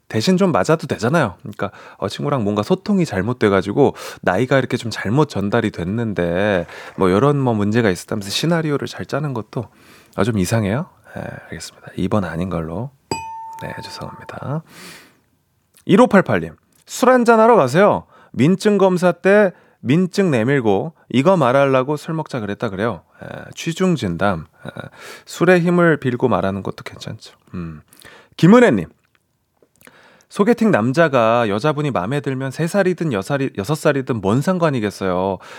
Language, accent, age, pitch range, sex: Korean, native, 30-49, 110-175 Hz, male